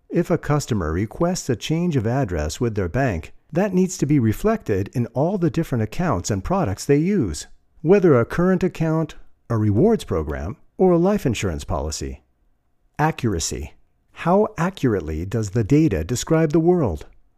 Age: 50-69